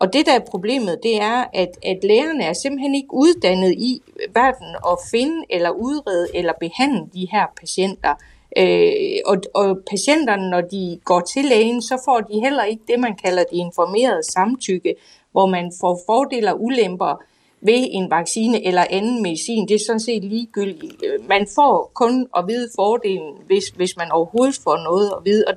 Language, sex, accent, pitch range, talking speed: Danish, female, native, 185-265 Hz, 180 wpm